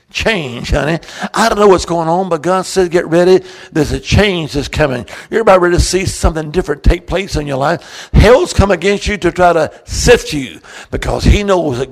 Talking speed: 215 wpm